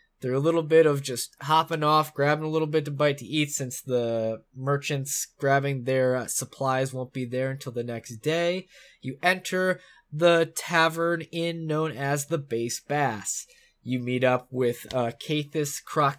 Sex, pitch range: male, 130-165 Hz